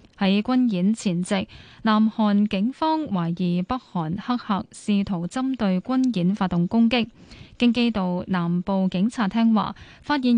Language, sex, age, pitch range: Chinese, female, 10-29, 185-240 Hz